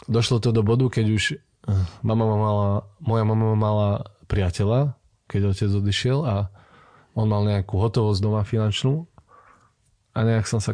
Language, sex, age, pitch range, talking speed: Slovak, male, 20-39, 100-115 Hz, 145 wpm